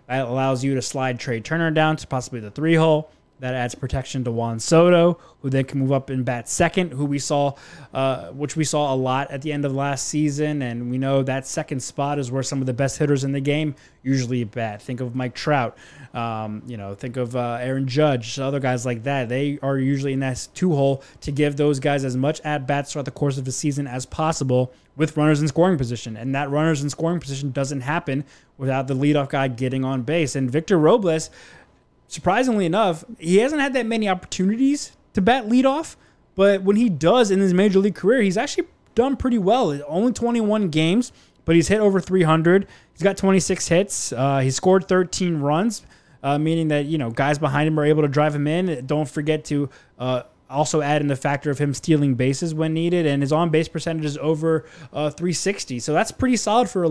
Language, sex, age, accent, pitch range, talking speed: English, male, 20-39, American, 135-170 Hz, 220 wpm